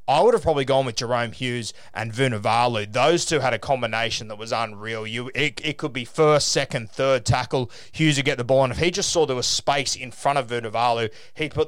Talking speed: 235 wpm